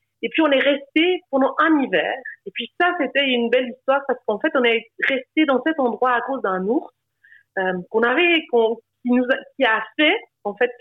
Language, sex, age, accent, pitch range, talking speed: French, female, 30-49, French, 235-305 Hz, 220 wpm